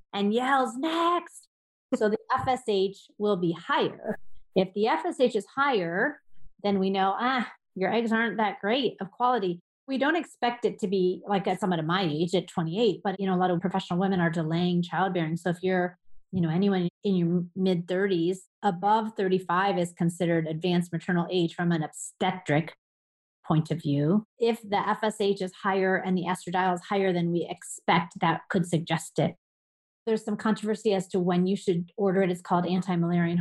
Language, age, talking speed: English, 30-49, 185 wpm